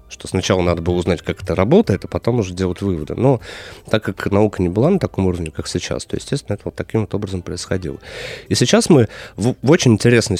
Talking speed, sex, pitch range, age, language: 225 wpm, male, 85-110 Hz, 30-49, Russian